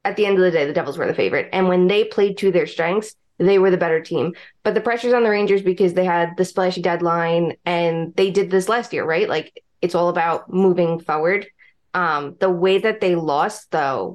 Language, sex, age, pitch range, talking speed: English, female, 20-39, 175-205 Hz, 235 wpm